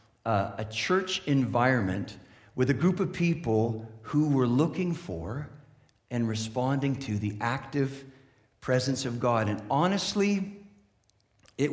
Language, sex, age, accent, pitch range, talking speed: English, male, 50-69, American, 110-165 Hz, 125 wpm